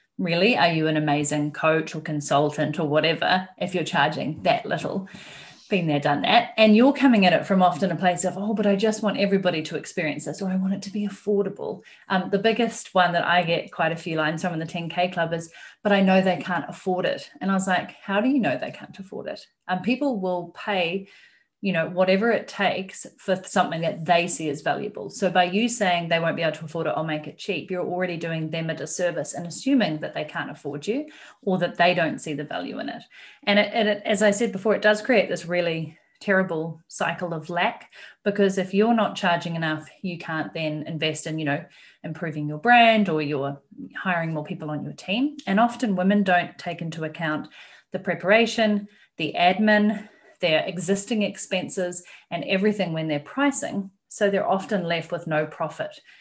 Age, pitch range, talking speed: 30-49, 165-205 Hz, 210 wpm